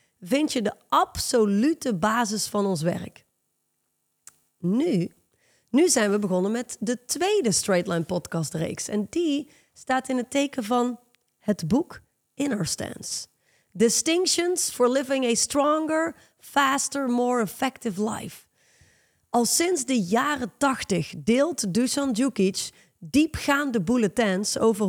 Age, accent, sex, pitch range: 30-49, Dutch, female, 205-275 Hz